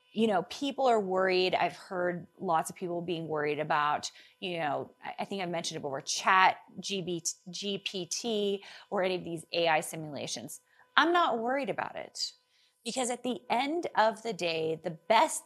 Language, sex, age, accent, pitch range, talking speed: English, female, 30-49, American, 175-240 Hz, 165 wpm